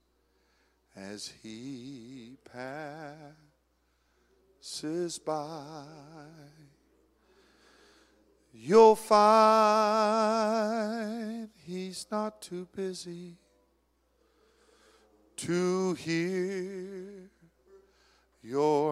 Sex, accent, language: male, American, English